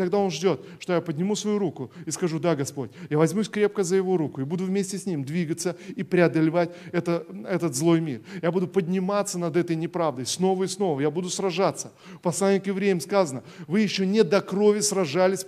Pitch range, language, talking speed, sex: 170-205 Hz, Russian, 200 wpm, male